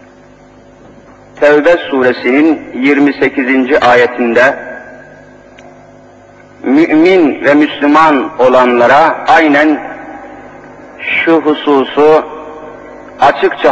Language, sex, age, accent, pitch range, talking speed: Turkish, male, 50-69, native, 135-200 Hz, 50 wpm